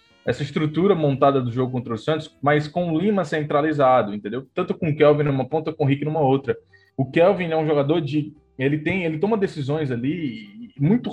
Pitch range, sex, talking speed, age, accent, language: 130-160 Hz, male, 205 wpm, 20-39, Brazilian, Portuguese